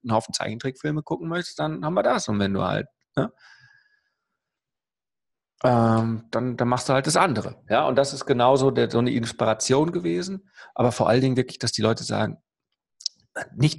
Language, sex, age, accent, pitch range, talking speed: German, male, 40-59, German, 105-140 Hz, 185 wpm